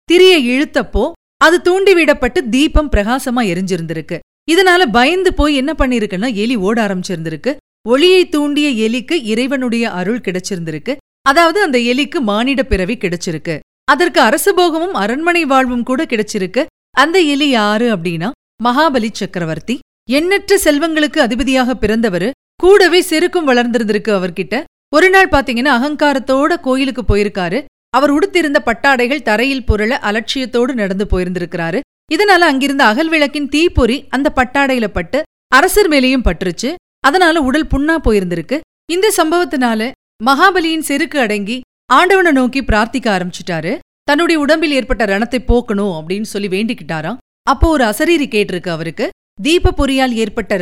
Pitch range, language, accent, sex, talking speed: 215-305 Hz, Tamil, native, female, 115 wpm